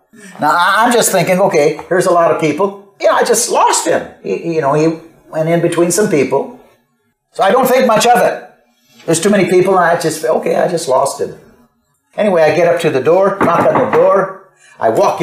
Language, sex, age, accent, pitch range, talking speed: English, male, 50-69, American, 170-245 Hz, 220 wpm